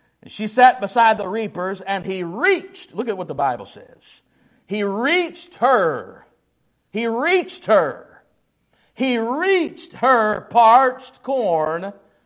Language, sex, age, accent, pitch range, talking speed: English, male, 50-69, American, 200-245 Hz, 120 wpm